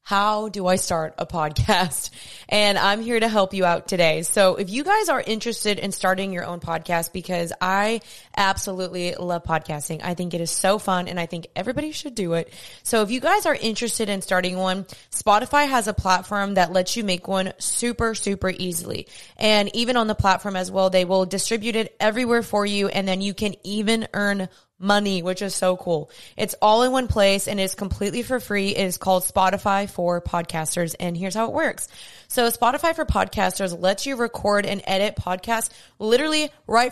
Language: English